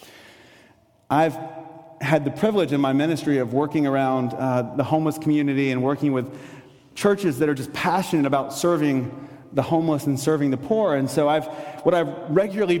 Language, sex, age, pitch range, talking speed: English, male, 30-49, 145-180 Hz, 165 wpm